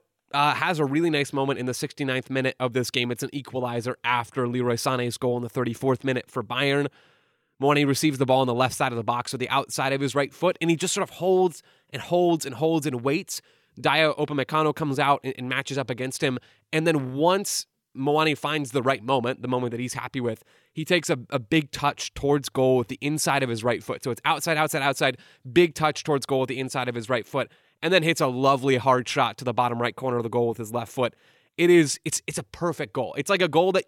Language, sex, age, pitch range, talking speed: English, male, 20-39, 125-155 Hz, 250 wpm